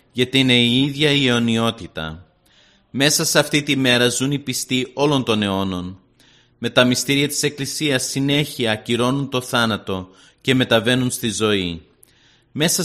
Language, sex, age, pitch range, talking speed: Greek, male, 30-49, 110-135 Hz, 145 wpm